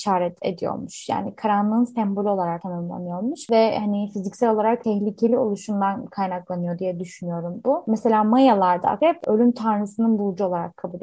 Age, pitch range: 20-39, 195-240 Hz